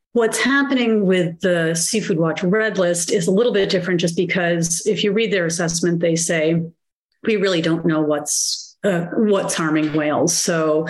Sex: female